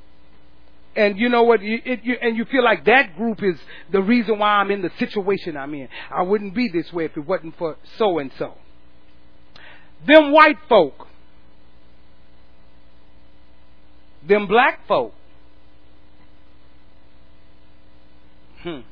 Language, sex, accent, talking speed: English, male, American, 125 wpm